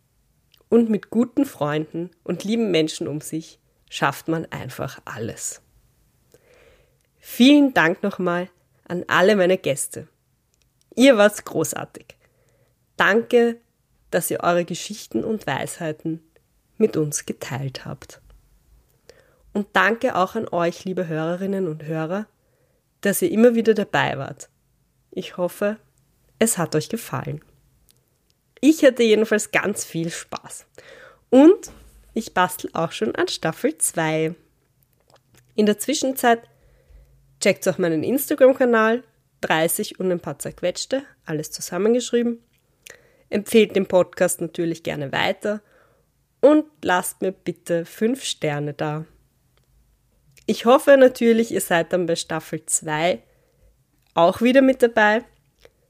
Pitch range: 155-225 Hz